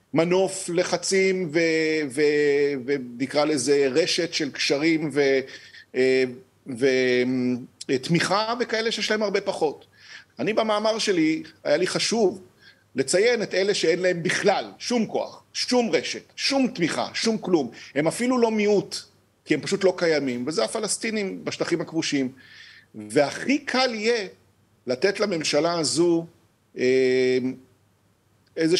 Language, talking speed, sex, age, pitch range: Hebrew, 115 wpm, male, 50-69, 130-185 Hz